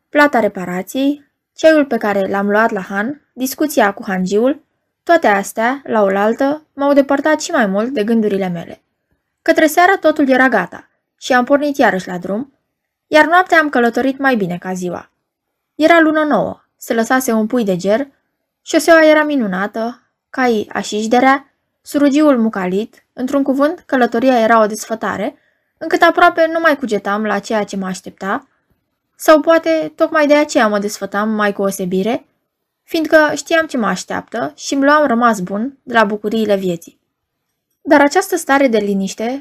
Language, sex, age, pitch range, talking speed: Romanian, female, 20-39, 210-300 Hz, 160 wpm